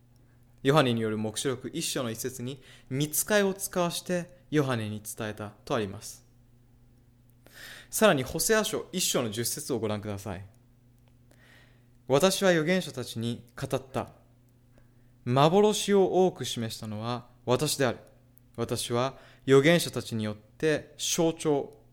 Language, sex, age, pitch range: Japanese, male, 20-39, 120-155 Hz